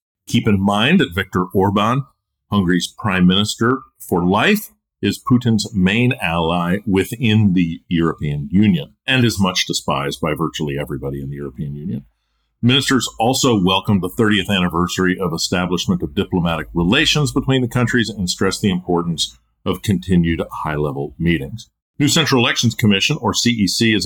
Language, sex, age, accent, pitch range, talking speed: English, male, 50-69, American, 85-110 Hz, 145 wpm